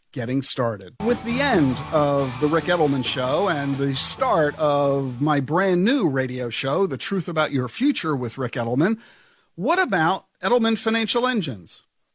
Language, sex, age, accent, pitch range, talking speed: English, male, 50-69, American, 145-220 Hz, 160 wpm